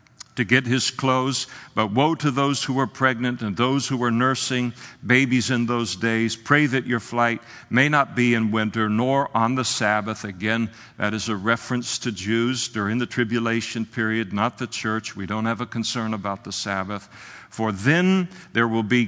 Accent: American